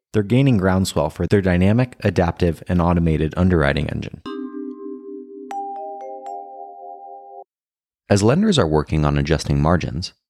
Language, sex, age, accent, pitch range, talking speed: English, male, 30-49, American, 75-100 Hz, 105 wpm